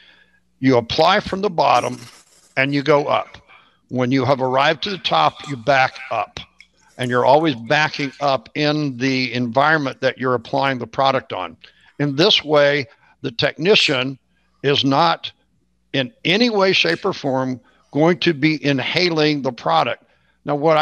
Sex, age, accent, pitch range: male, 60-79, American, 130-160 Hz